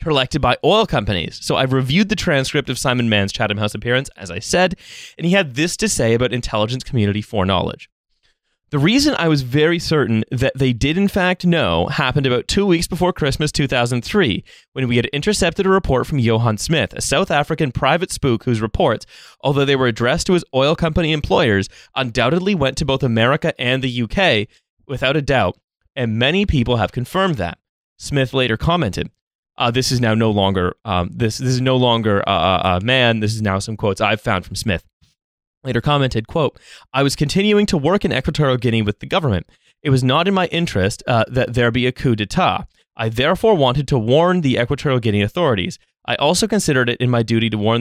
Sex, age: male, 20-39